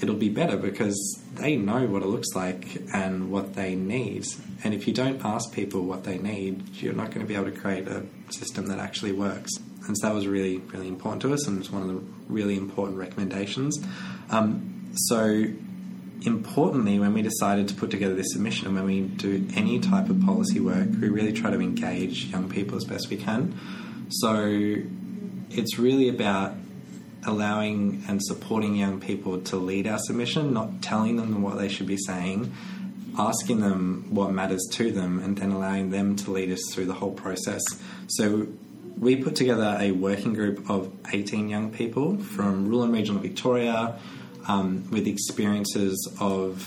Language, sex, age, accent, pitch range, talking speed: English, male, 20-39, Australian, 95-115 Hz, 185 wpm